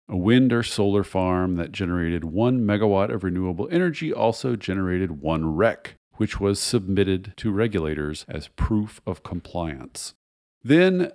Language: English